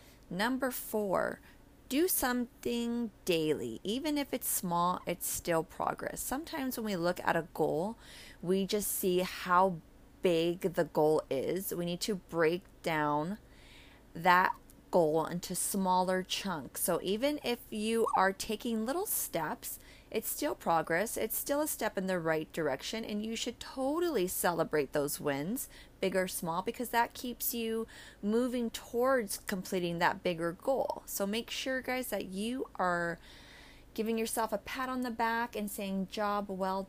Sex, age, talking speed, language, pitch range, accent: female, 30-49, 155 wpm, English, 175-245 Hz, American